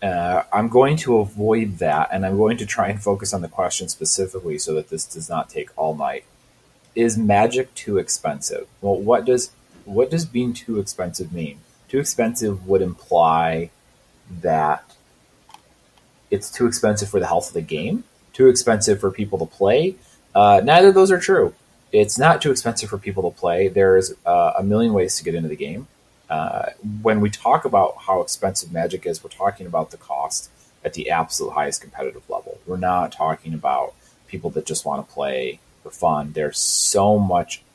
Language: English